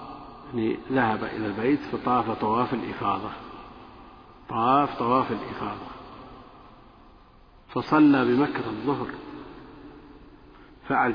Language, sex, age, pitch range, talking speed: Arabic, male, 50-69, 115-135 Hz, 70 wpm